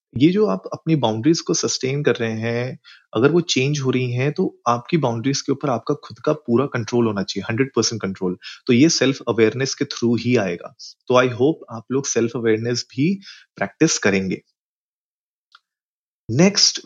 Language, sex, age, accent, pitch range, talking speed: Hindi, male, 30-49, native, 115-150 Hz, 180 wpm